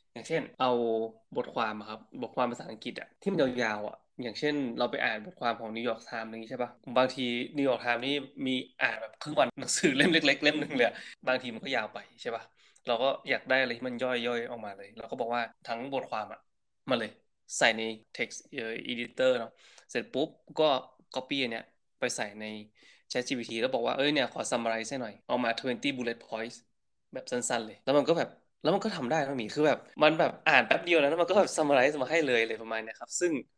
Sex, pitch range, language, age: male, 115-140 Hz, Thai, 20-39